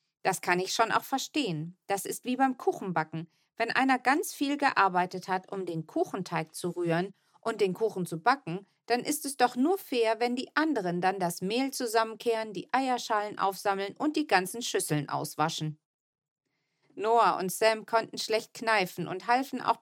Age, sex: 40-59, female